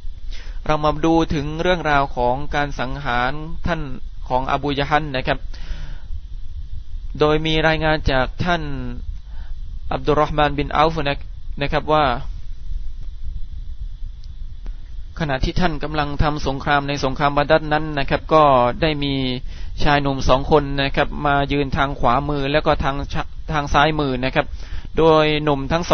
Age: 20-39